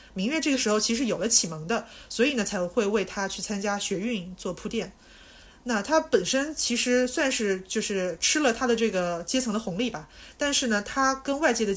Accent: native